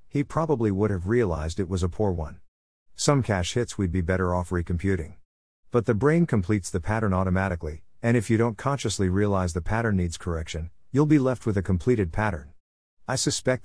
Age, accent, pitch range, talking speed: 50-69, American, 90-115 Hz, 195 wpm